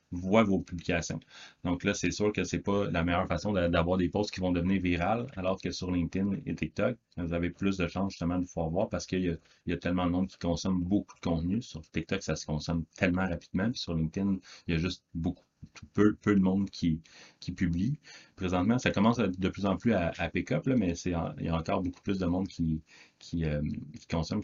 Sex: male